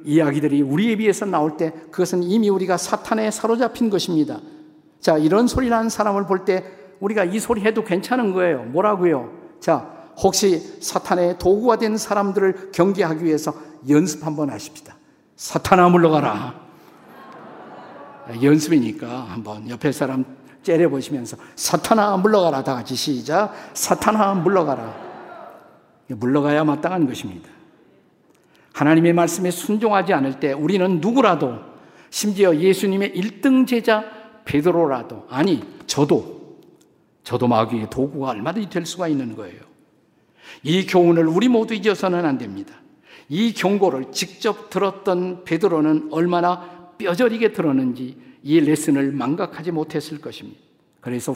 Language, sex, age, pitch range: Korean, male, 50-69, 150-205 Hz